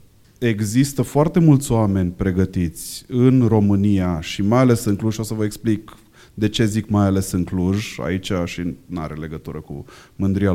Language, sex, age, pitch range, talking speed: Romanian, male, 30-49, 95-120 Hz, 170 wpm